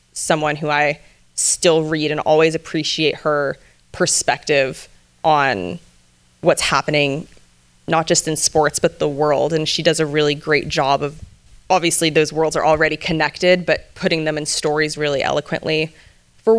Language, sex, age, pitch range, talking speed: English, female, 20-39, 150-170 Hz, 150 wpm